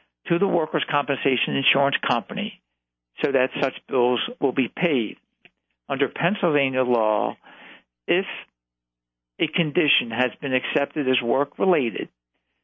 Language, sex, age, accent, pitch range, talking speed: English, male, 60-79, American, 105-150 Hz, 115 wpm